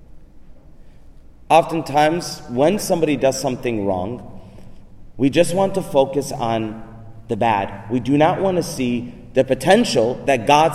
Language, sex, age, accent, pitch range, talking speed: English, male, 30-49, American, 120-175 Hz, 135 wpm